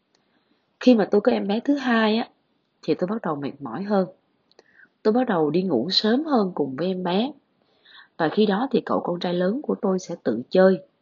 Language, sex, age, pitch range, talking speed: Vietnamese, female, 20-39, 160-230 Hz, 220 wpm